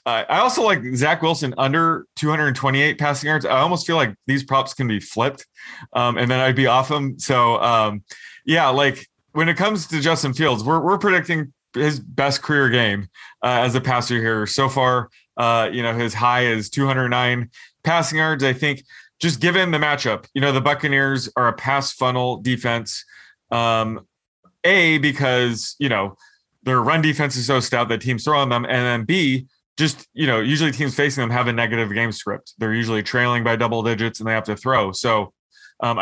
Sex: male